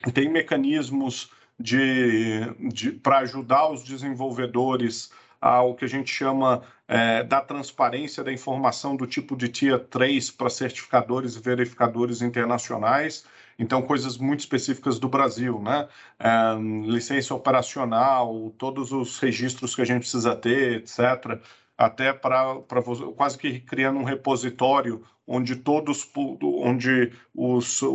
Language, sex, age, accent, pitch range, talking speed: Portuguese, male, 40-59, Brazilian, 120-135 Hz, 125 wpm